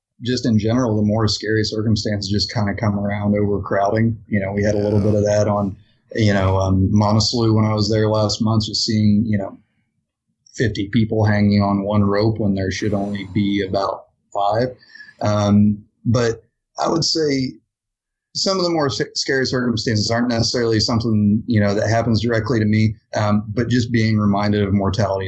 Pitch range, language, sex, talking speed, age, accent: 105-115 Hz, English, male, 185 wpm, 30-49, American